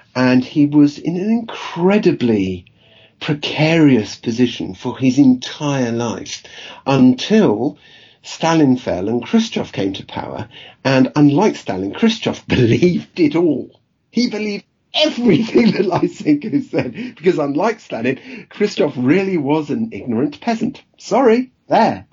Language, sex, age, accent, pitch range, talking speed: English, male, 50-69, British, 110-165 Hz, 120 wpm